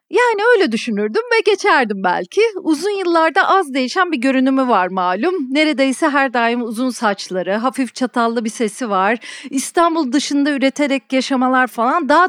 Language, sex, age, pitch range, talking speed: Turkish, female, 40-59, 240-340 Hz, 145 wpm